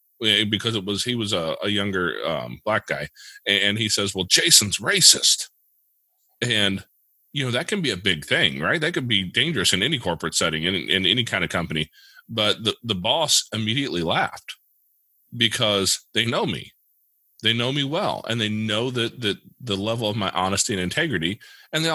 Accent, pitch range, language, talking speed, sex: American, 95-120 Hz, English, 190 wpm, male